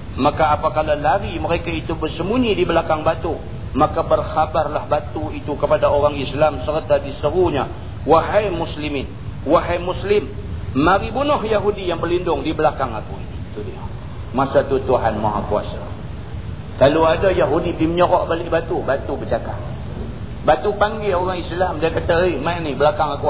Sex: male